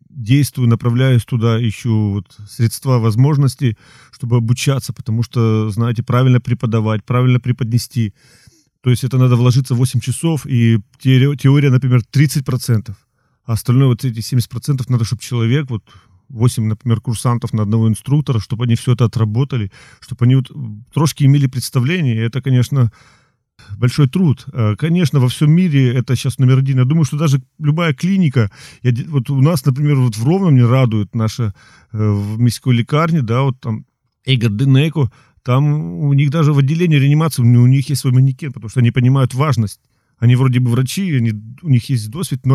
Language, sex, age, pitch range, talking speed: Ukrainian, male, 40-59, 120-140 Hz, 160 wpm